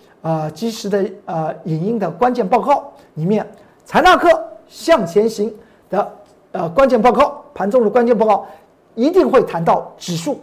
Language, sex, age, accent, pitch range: Chinese, male, 50-69, native, 200-275 Hz